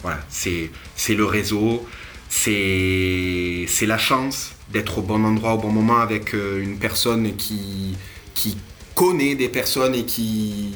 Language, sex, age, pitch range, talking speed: French, male, 20-39, 100-120 Hz, 145 wpm